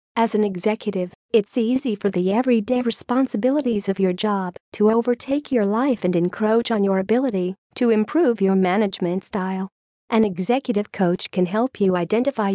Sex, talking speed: female, 160 wpm